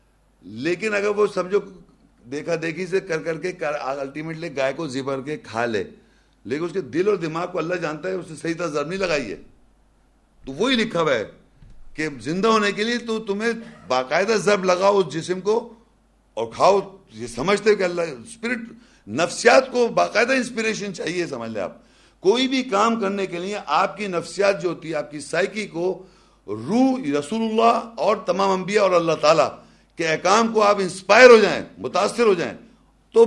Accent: Indian